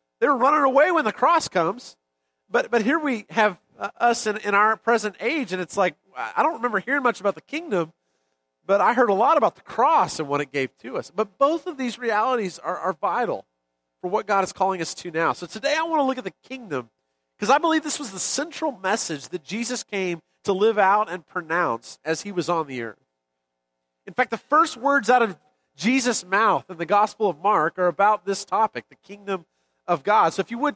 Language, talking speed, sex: English, 230 wpm, male